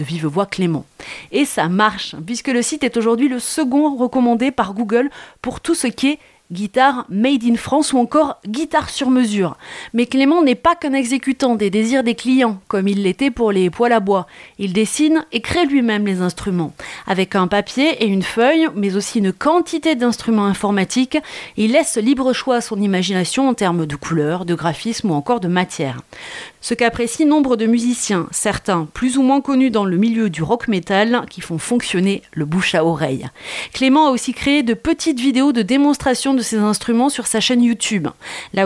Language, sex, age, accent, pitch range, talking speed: French, female, 30-49, French, 195-265 Hz, 200 wpm